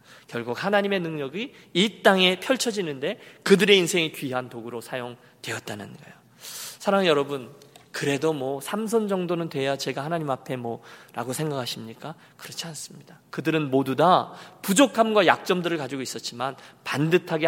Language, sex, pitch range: Korean, male, 130-190 Hz